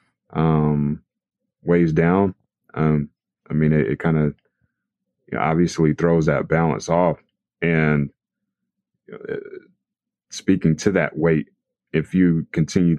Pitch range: 75-85 Hz